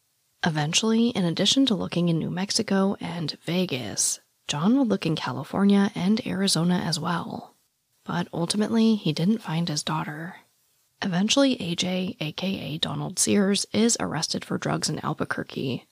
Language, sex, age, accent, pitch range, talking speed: English, female, 30-49, American, 165-210 Hz, 140 wpm